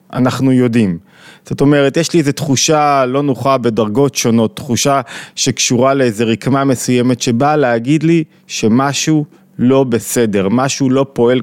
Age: 20-39